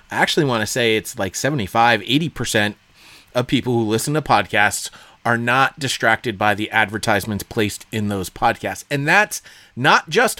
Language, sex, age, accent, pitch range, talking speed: English, male, 30-49, American, 110-150 Hz, 165 wpm